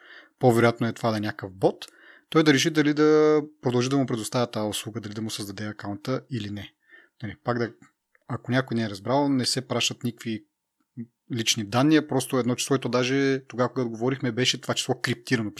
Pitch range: 115-145 Hz